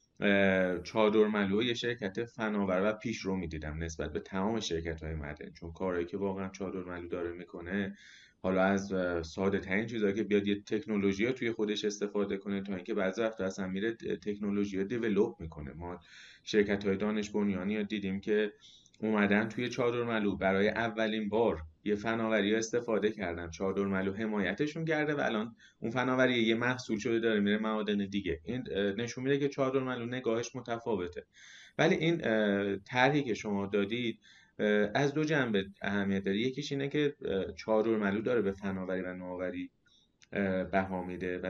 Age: 30-49